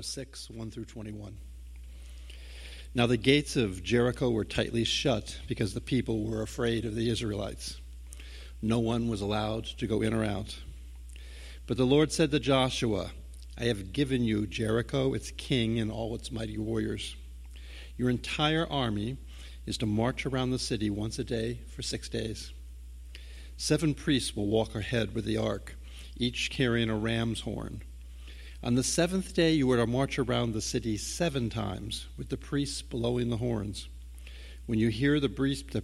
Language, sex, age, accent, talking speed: English, male, 50-69, American, 165 wpm